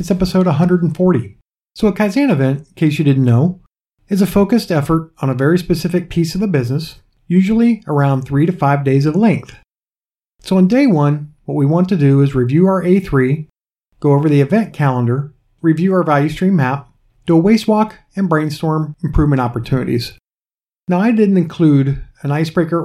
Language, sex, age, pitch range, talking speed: English, male, 50-69, 135-180 Hz, 180 wpm